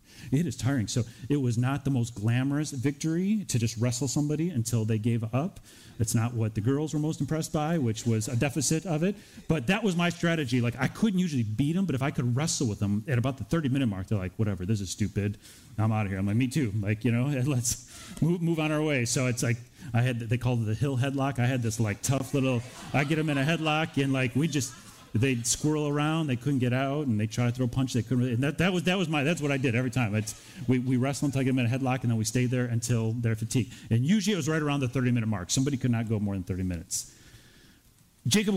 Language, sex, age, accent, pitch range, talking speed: English, male, 40-59, American, 115-150 Hz, 270 wpm